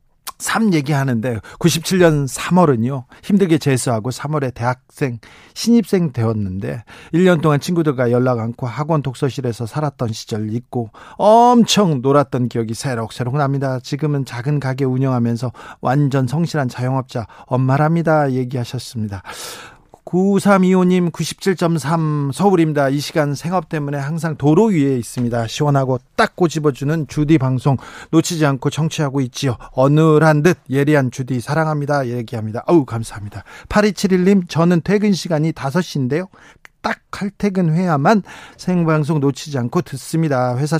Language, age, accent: Korean, 40-59, native